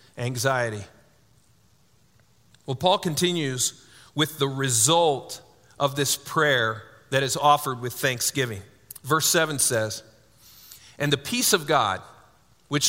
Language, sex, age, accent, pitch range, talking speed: English, male, 40-59, American, 120-160 Hz, 110 wpm